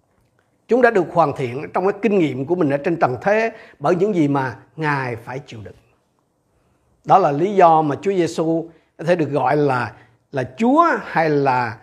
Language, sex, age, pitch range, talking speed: Vietnamese, male, 50-69, 140-200 Hz, 200 wpm